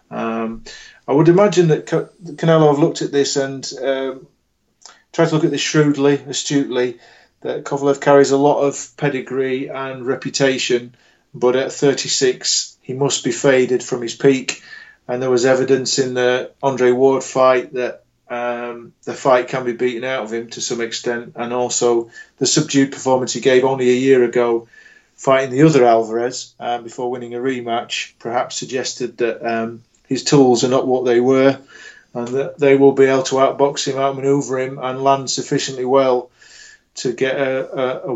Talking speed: 175 wpm